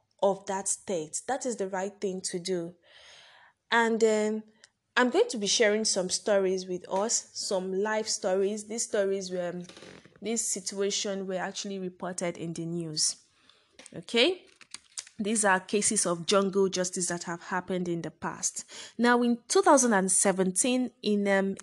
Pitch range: 190-230 Hz